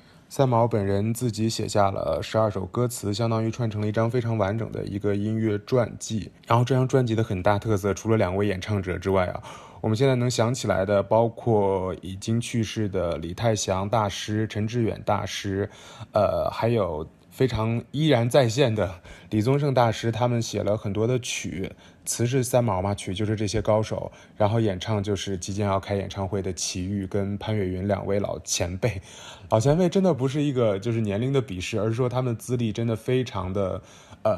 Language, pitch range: Chinese, 100-120 Hz